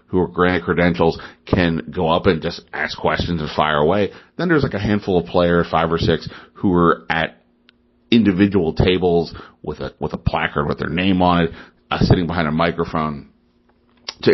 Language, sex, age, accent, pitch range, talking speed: English, male, 40-59, American, 80-95 Hz, 190 wpm